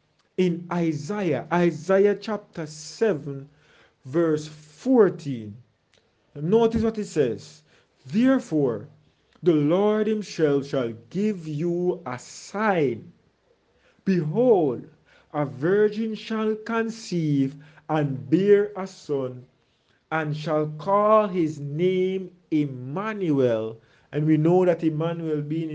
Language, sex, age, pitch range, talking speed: English, male, 40-59, 145-210 Hz, 95 wpm